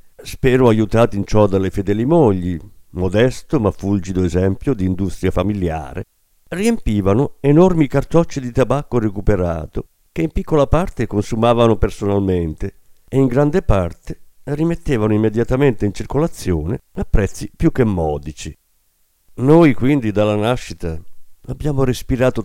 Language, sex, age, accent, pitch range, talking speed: Italian, male, 50-69, native, 90-125 Hz, 120 wpm